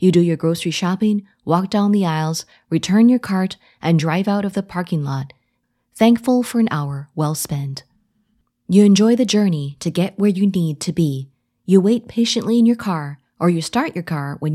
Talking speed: 200 wpm